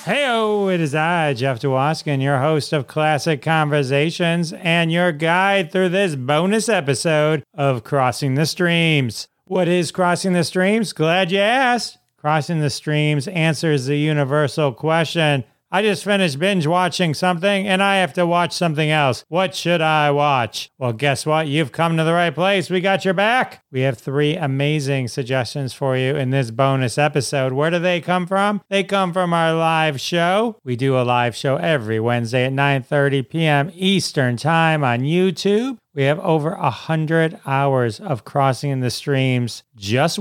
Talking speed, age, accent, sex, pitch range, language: 170 wpm, 40-59, American, male, 135-165 Hz, English